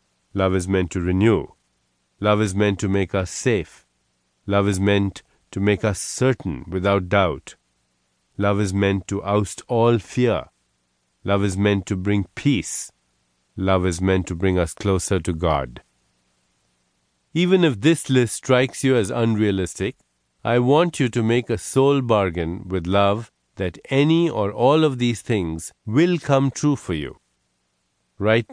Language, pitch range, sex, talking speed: English, 75-110 Hz, male, 155 wpm